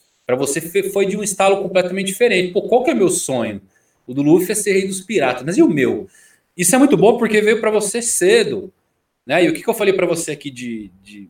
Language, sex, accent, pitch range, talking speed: Portuguese, male, Brazilian, 145-210 Hz, 255 wpm